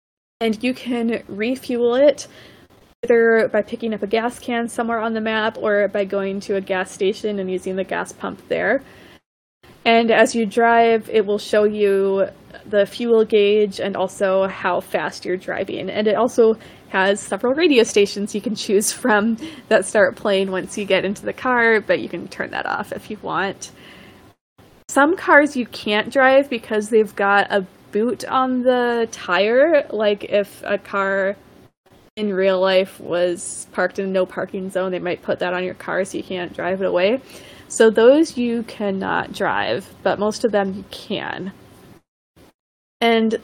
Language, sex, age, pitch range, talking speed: English, female, 20-39, 195-235 Hz, 175 wpm